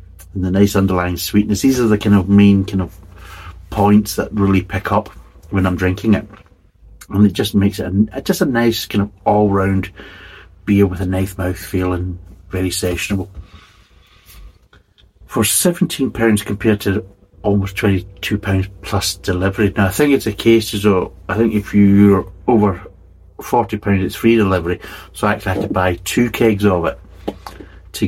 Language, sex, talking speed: English, male, 165 wpm